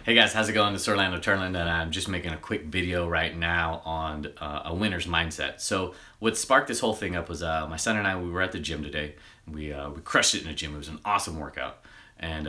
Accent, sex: American, male